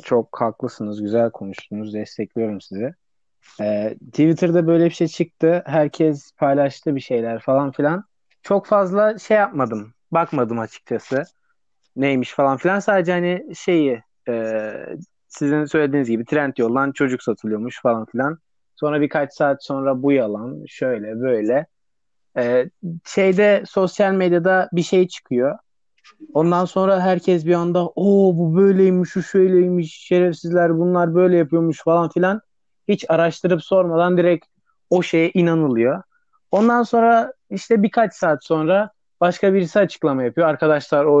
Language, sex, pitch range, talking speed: Turkish, male, 135-190 Hz, 130 wpm